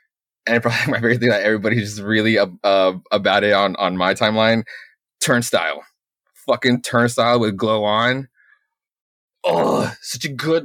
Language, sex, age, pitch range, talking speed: English, male, 20-39, 110-130 Hz, 150 wpm